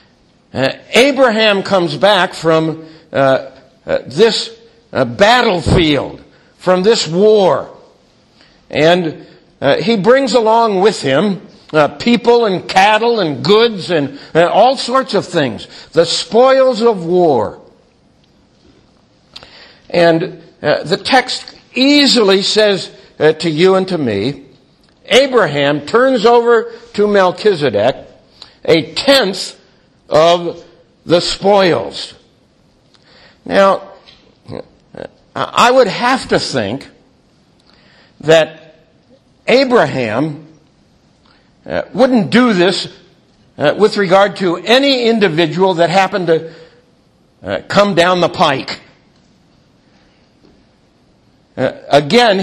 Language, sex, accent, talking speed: English, male, American, 95 wpm